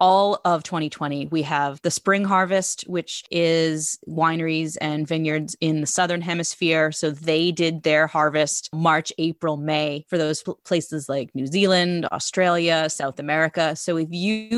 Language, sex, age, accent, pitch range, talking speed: English, female, 20-39, American, 150-175 Hz, 150 wpm